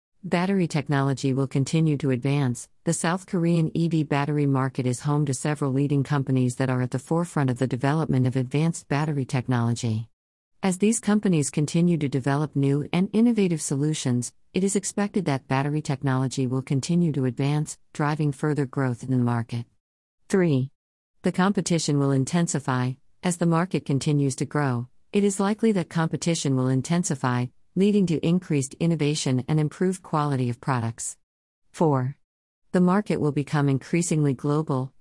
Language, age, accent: English, 50-69, American